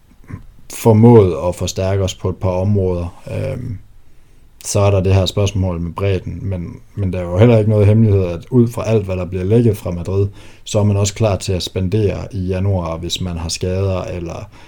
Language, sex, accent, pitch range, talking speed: Danish, male, native, 90-105 Hz, 210 wpm